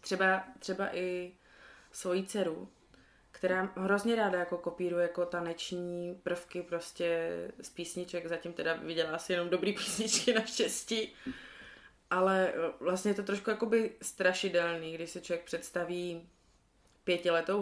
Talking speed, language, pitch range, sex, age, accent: 125 wpm, Czech, 170-220 Hz, female, 20-39, native